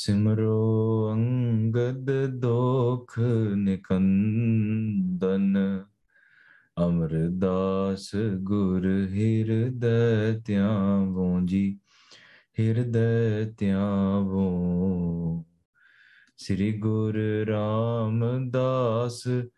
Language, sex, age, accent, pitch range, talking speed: English, male, 20-39, Indian, 95-110 Hz, 45 wpm